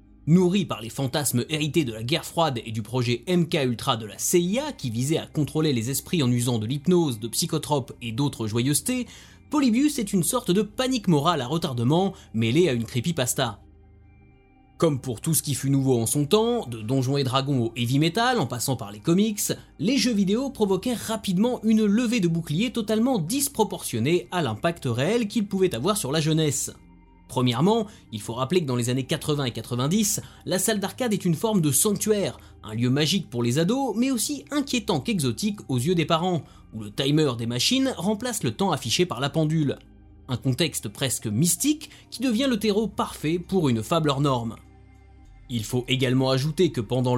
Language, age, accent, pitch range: French, 20-39, French, 125-200 Hz